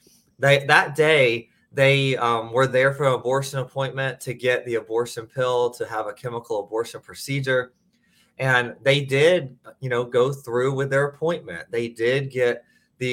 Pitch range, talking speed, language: 120-150 Hz, 165 wpm, English